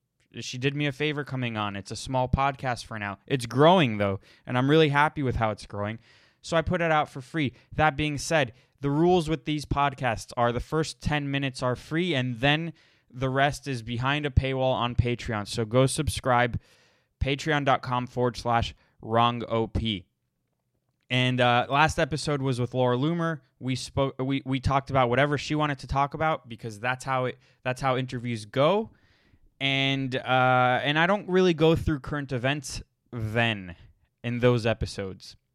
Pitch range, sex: 120-140 Hz, male